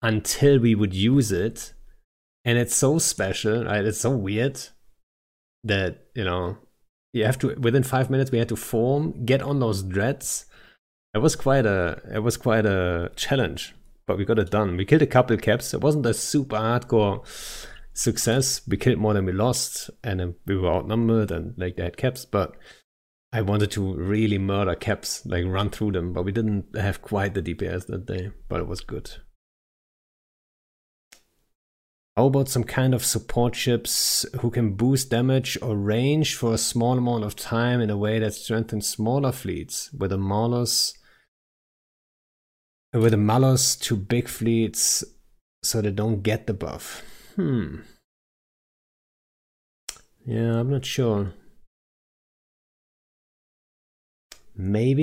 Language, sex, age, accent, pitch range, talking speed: English, male, 30-49, German, 95-120 Hz, 155 wpm